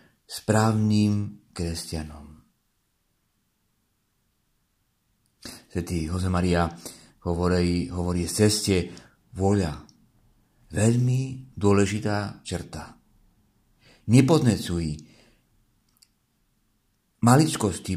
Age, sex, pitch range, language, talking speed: 50-69, male, 90-125 Hz, Czech, 45 wpm